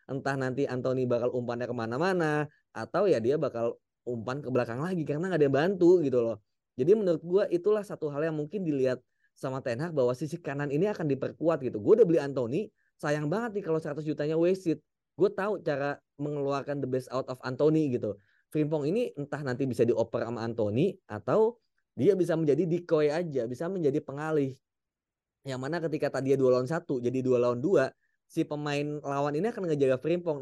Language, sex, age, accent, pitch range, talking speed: Indonesian, male, 20-39, native, 125-165 Hz, 195 wpm